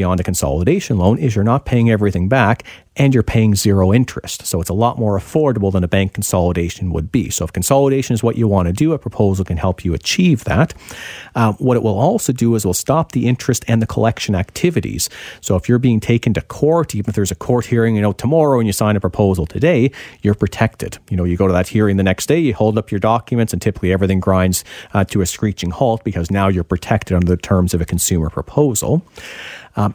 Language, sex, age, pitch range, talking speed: English, male, 40-59, 95-120 Hz, 240 wpm